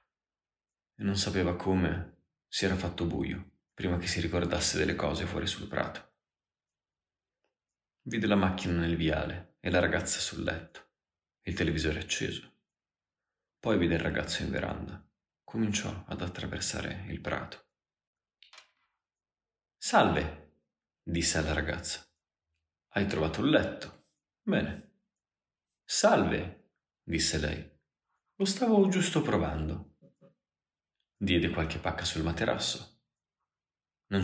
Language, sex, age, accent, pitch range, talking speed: Italian, male, 30-49, native, 80-100 Hz, 110 wpm